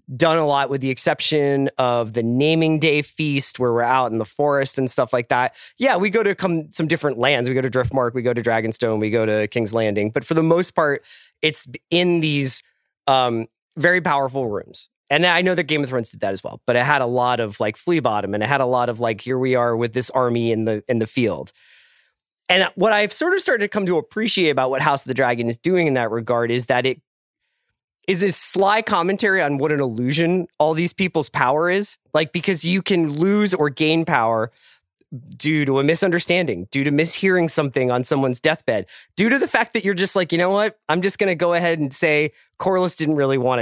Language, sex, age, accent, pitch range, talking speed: English, male, 20-39, American, 125-180 Hz, 235 wpm